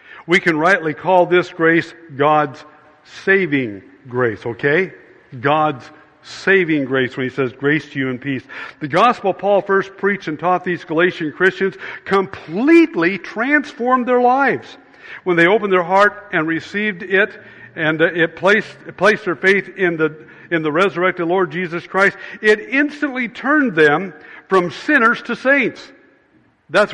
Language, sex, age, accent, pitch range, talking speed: English, male, 60-79, American, 155-195 Hz, 150 wpm